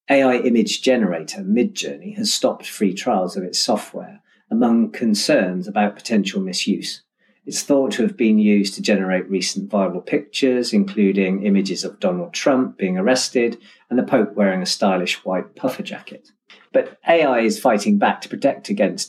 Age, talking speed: 40-59, 160 wpm